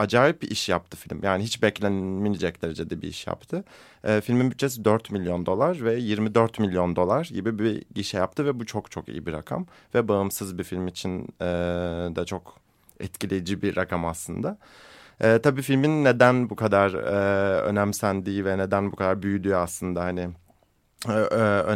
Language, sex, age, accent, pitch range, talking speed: Turkish, male, 30-49, native, 90-115 Hz, 165 wpm